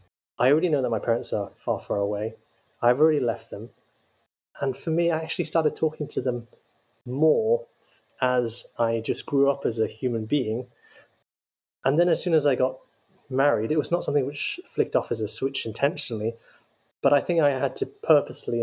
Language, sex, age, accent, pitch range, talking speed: English, male, 20-39, British, 115-140 Hz, 190 wpm